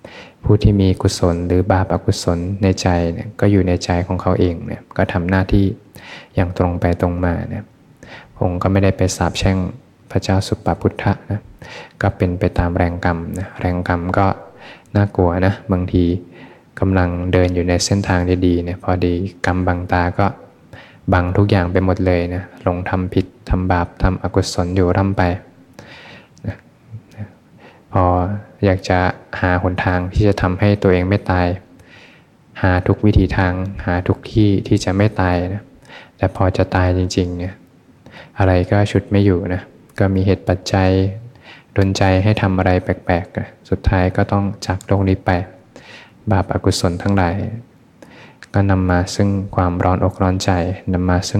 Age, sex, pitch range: 20-39, male, 90-100 Hz